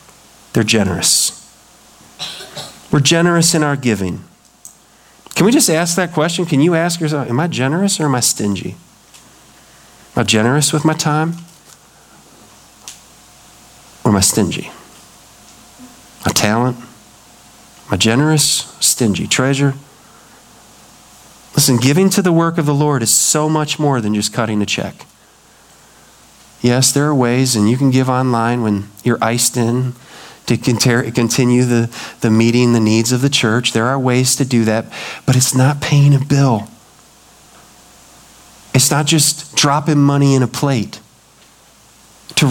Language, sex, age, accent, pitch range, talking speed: English, male, 40-59, American, 120-155 Hz, 145 wpm